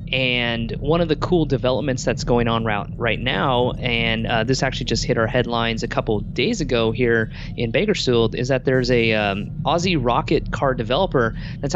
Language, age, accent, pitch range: English, 20-39, American, 120-150 Hz